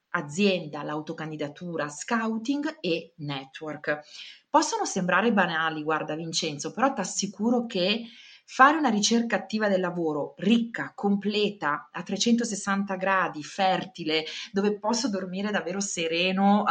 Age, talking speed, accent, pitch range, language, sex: 30-49, 110 wpm, native, 160-220 Hz, Italian, female